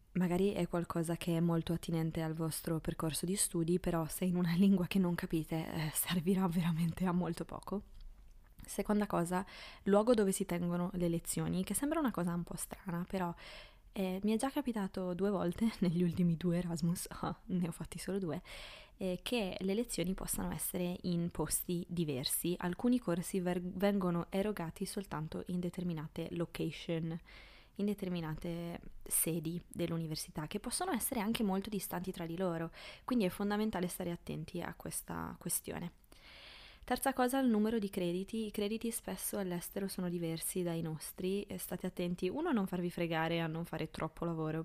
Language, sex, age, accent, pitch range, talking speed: Italian, female, 20-39, native, 165-190 Hz, 165 wpm